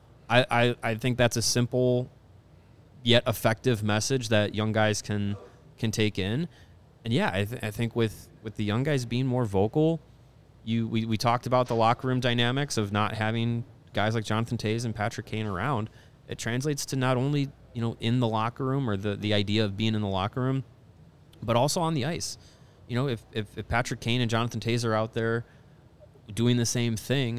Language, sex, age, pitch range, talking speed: English, male, 20-39, 105-125 Hz, 205 wpm